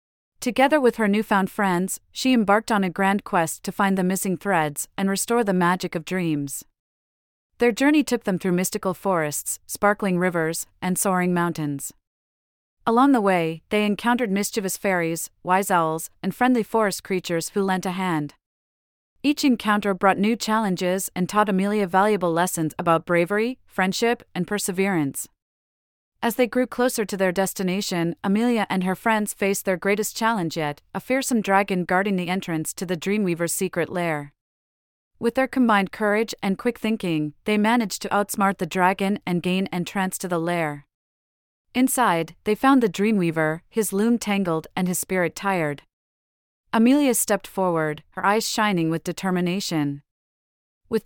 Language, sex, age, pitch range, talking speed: English, female, 30-49, 170-215 Hz, 155 wpm